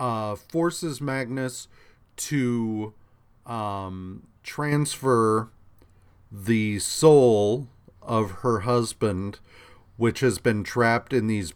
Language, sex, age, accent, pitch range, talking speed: English, male, 40-59, American, 100-125 Hz, 90 wpm